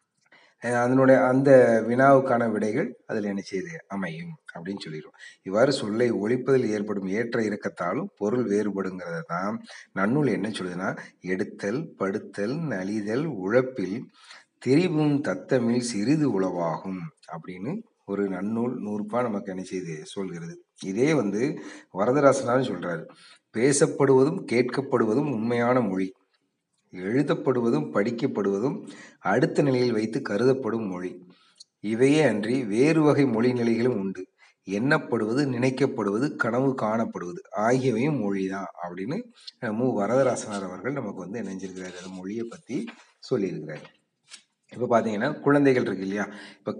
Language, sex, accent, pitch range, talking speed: Tamil, male, native, 100-135 Hz, 100 wpm